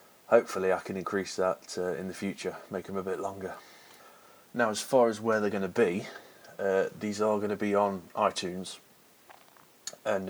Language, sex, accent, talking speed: English, male, British, 180 wpm